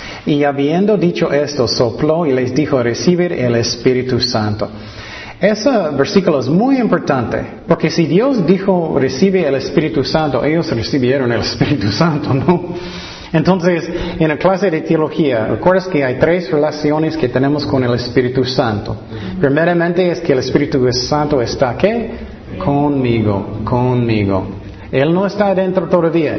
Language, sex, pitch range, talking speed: Spanish, male, 125-165 Hz, 145 wpm